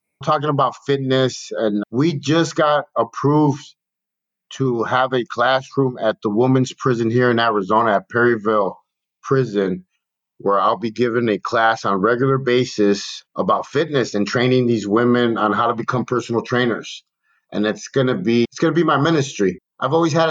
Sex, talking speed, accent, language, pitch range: male, 165 wpm, American, English, 115-145 Hz